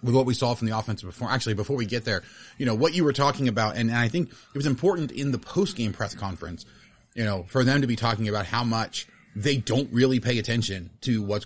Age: 30-49